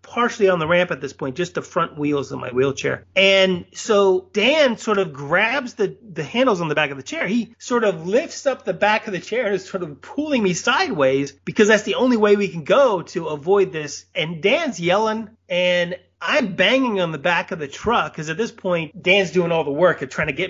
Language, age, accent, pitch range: English, 30-49, American, 155-205 Hz